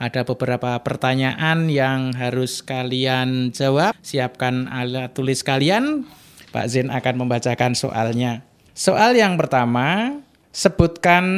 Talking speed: 105 wpm